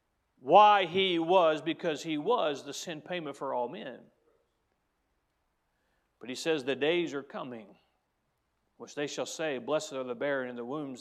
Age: 40-59